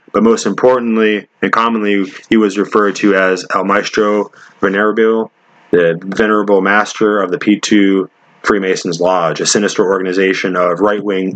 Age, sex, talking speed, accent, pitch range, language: 20-39, male, 135 wpm, American, 95-110 Hz, English